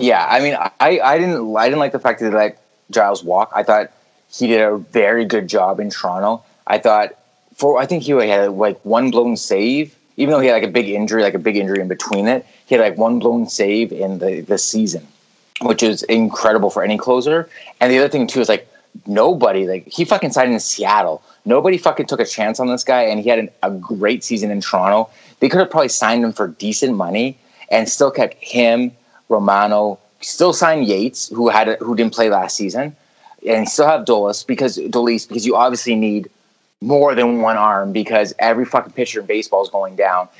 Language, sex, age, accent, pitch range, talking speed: English, male, 20-39, American, 105-125 Hz, 215 wpm